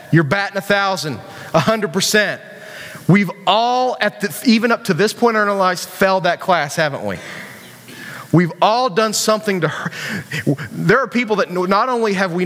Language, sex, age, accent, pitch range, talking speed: English, male, 30-49, American, 140-205 Hz, 185 wpm